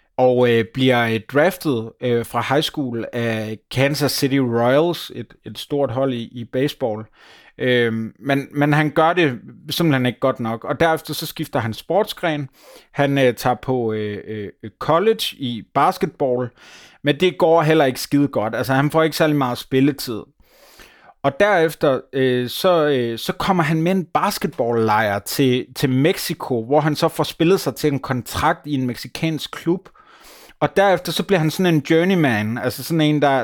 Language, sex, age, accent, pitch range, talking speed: Danish, male, 30-49, native, 125-160 Hz, 175 wpm